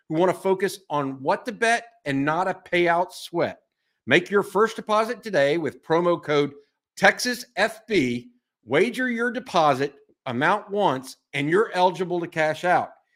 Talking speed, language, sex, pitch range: 150 wpm, English, male, 150-215 Hz